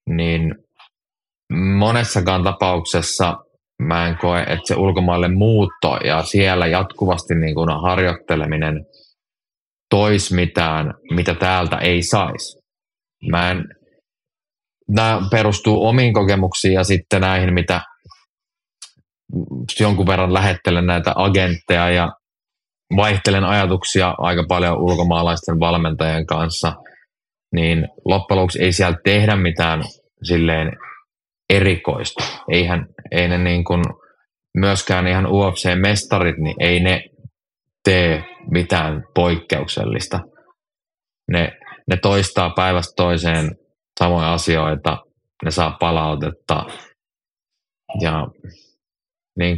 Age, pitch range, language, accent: 20-39, 85-100 Hz, Finnish, native